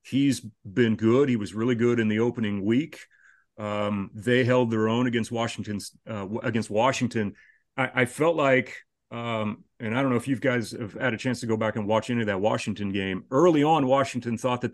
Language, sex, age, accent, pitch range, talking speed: English, male, 40-59, American, 115-140 Hz, 210 wpm